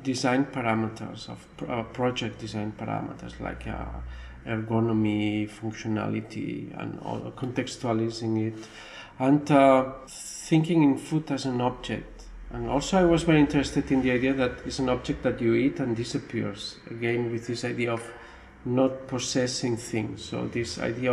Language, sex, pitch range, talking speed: English, male, 115-140 Hz, 150 wpm